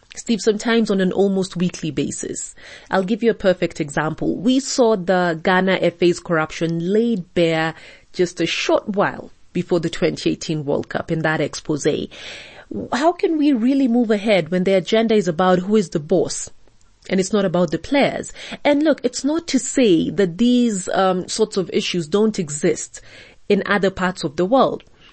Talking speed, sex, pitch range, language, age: 175 wpm, female, 175-225 Hz, English, 30-49